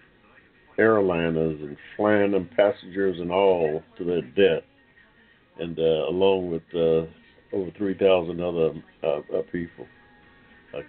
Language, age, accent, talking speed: English, 60-79, American, 120 wpm